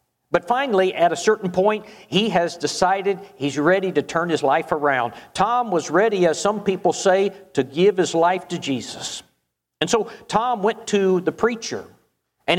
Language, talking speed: English, 175 wpm